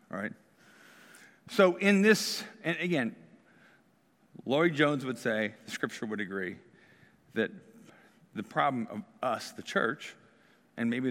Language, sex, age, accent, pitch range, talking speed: English, male, 50-69, American, 115-150 Hz, 130 wpm